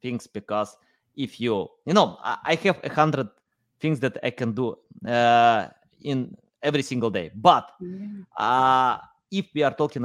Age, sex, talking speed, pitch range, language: 20-39, male, 155 wpm, 115-150 Hz, English